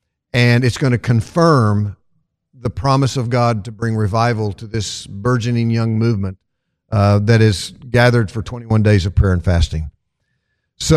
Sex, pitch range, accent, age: male, 105-135 Hz, American, 50-69